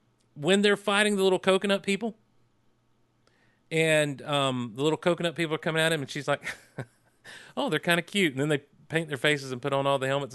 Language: English